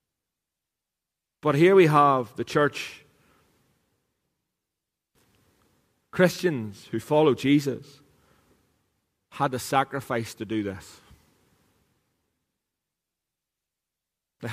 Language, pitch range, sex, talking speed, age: English, 110-145 Hz, male, 70 wpm, 40-59